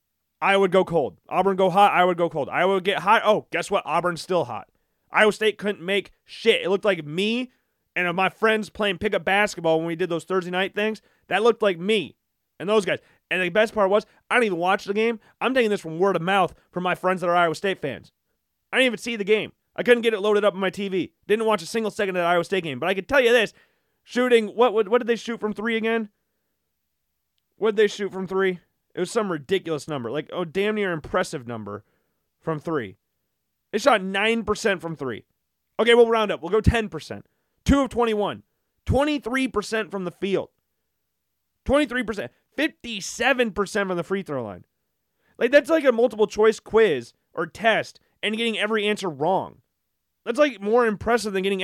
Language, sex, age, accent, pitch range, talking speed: English, male, 30-49, American, 170-225 Hz, 210 wpm